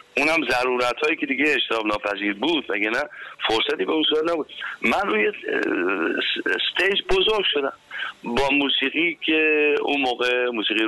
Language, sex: Persian, male